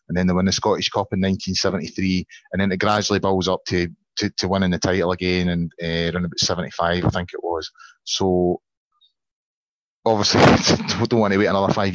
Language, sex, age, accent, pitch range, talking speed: English, male, 30-49, British, 90-105 Hz, 200 wpm